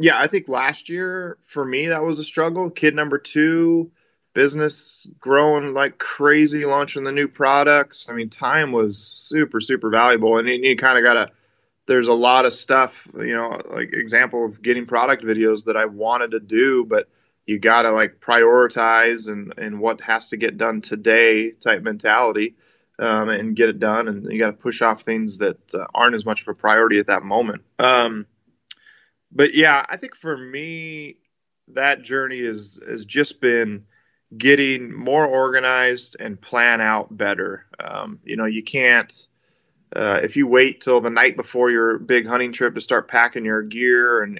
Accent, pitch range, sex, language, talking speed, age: American, 115-140 Hz, male, English, 180 wpm, 20-39